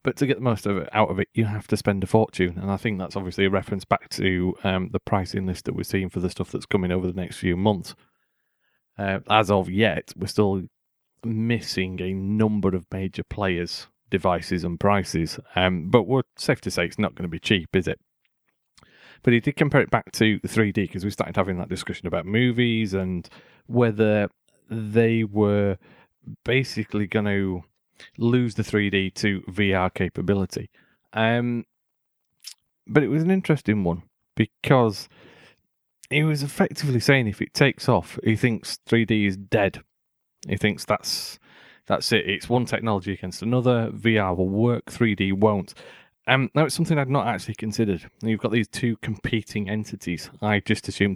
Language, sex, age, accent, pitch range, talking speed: English, male, 30-49, British, 95-115 Hz, 180 wpm